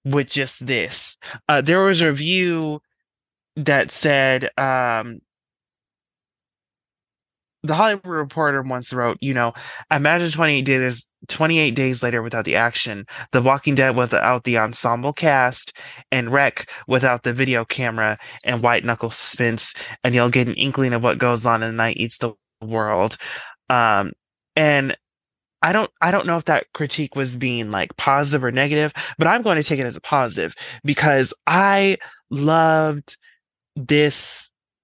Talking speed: 150 wpm